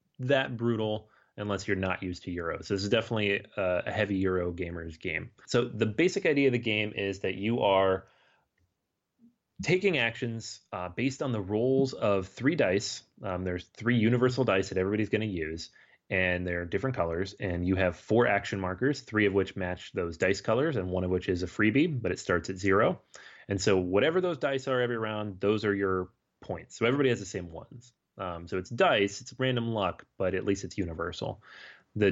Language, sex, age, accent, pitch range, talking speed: English, male, 30-49, American, 90-120 Hz, 200 wpm